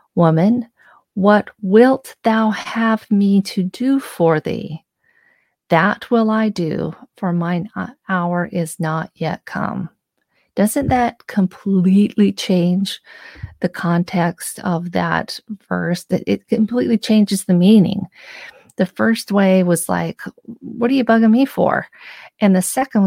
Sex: female